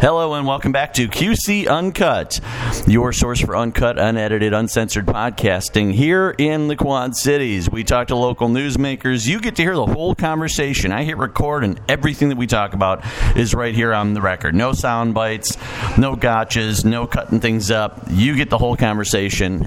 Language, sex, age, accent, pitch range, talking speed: English, male, 40-59, American, 105-130 Hz, 185 wpm